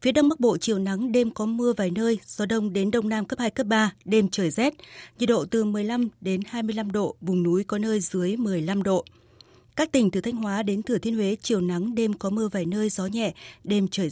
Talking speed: 240 wpm